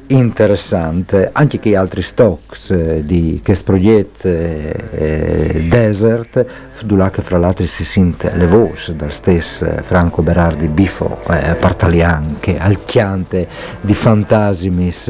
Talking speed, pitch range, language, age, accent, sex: 120 wpm, 90-115 Hz, Italian, 50-69, native, male